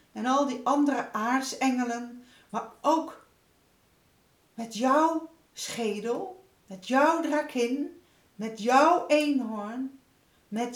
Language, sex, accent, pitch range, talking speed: Dutch, female, Dutch, 200-295 Hz, 95 wpm